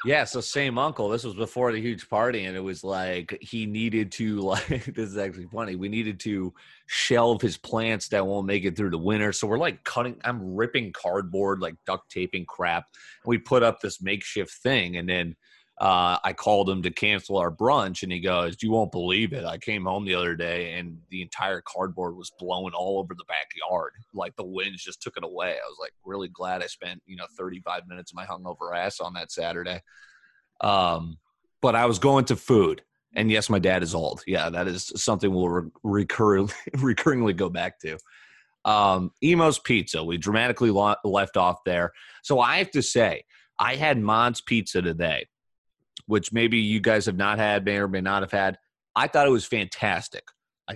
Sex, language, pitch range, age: male, English, 95-120 Hz, 30-49